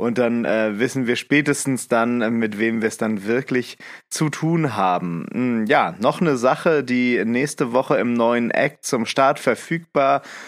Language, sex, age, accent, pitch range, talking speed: German, male, 30-49, German, 120-145 Hz, 165 wpm